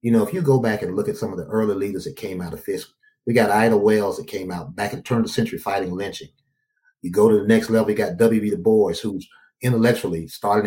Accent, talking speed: American, 275 wpm